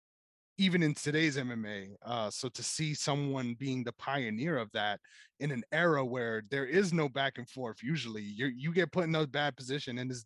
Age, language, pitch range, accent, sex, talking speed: 20-39, English, 115-140 Hz, American, male, 200 wpm